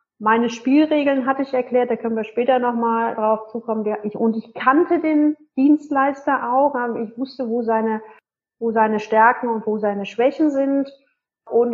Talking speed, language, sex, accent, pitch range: 160 wpm, German, female, German, 230-290 Hz